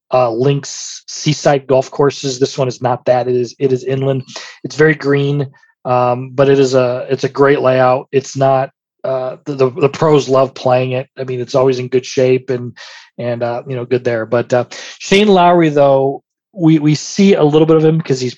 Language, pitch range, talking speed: English, 130-145 Hz, 215 wpm